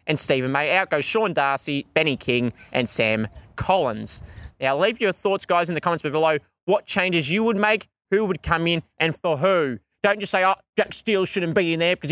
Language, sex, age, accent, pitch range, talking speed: English, male, 20-39, Australian, 135-190 Hz, 220 wpm